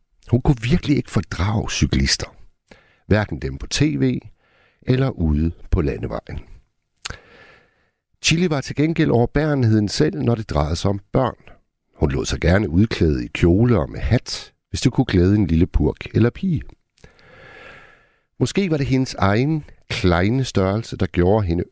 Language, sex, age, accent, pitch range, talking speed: Danish, male, 60-79, native, 80-120 Hz, 150 wpm